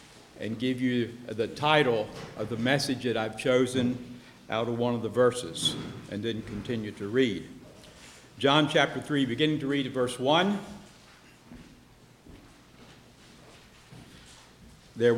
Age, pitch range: 60-79, 120-165 Hz